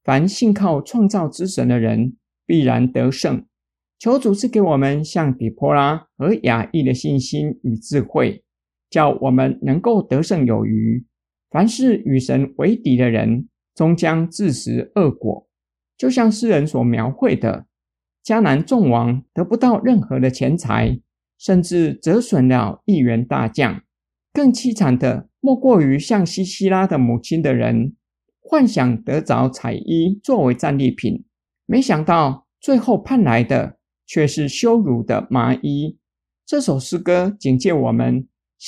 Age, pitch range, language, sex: 50-69, 125-195 Hz, Chinese, male